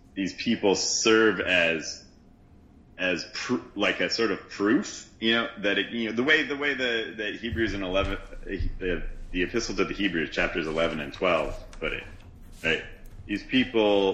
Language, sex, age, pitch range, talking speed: English, male, 30-49, 90-100 Hz, 175 wpm